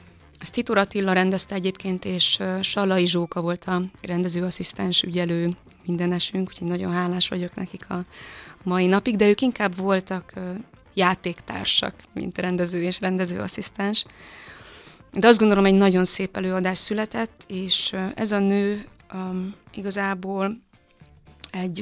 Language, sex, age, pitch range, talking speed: Hungarian, female, 20-39, 180-200 Hz, 130 wpm